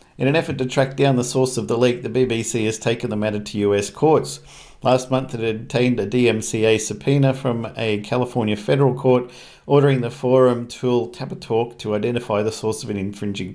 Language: English